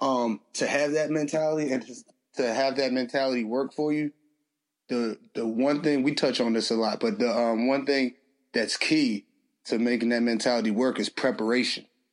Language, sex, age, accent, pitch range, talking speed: English, male, 30-49, American, 120-170 Hz, 185 wpm